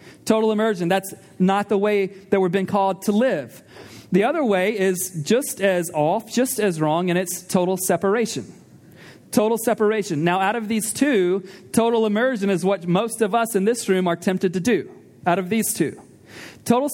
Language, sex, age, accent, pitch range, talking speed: English, male, 40-59, American, 180-220 Hz, 185 wpm